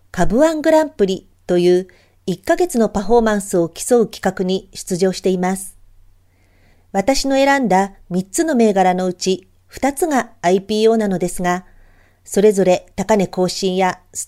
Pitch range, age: 175-225 Hz, 40-59